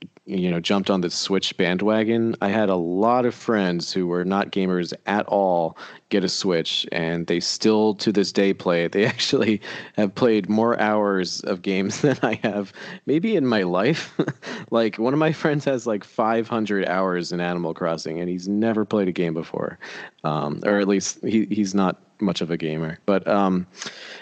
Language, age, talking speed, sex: English, 30-49, 190 wpm, male